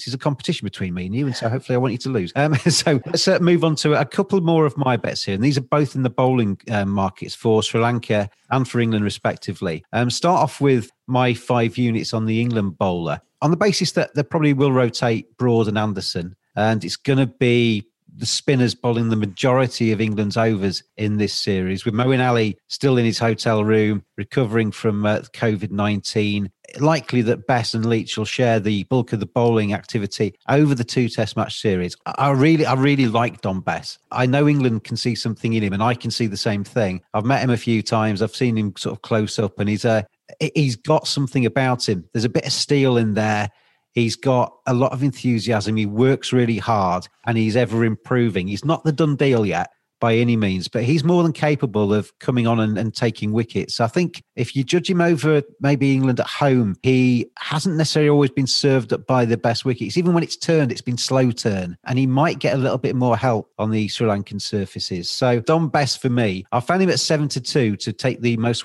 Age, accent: 40-59, British